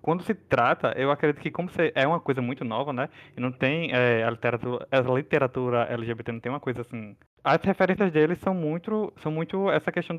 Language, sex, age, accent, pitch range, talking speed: Portuguese, male, 20-39, Brazilian, 125-155 Hz, 200 wpm